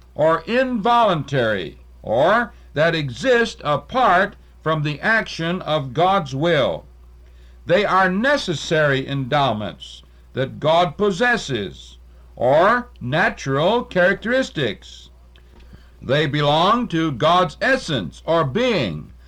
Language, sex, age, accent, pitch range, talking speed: English, male, 60-79, American, 130-195 Hz, 90 wpm